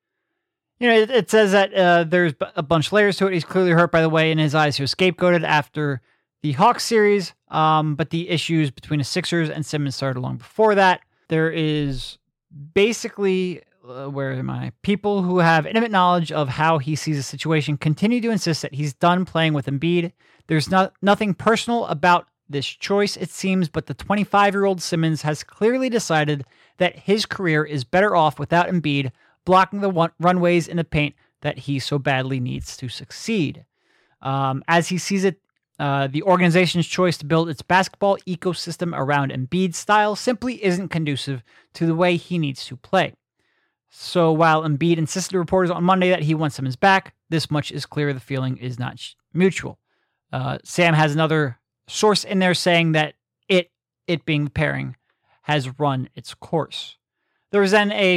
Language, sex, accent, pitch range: English, male, American, 145-185 Hz